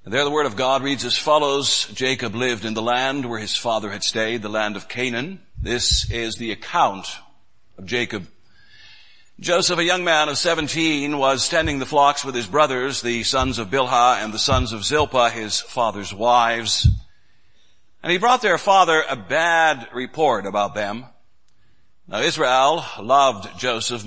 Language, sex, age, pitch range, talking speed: English, male, 60-79, 115-155 Hz, 165 wpm